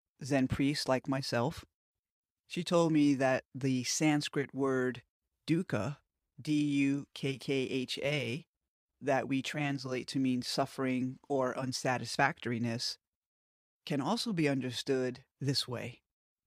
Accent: American